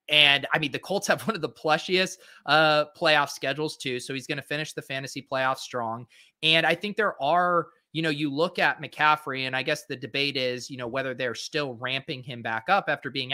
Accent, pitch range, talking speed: American, 130-160 Hz, 230 wpm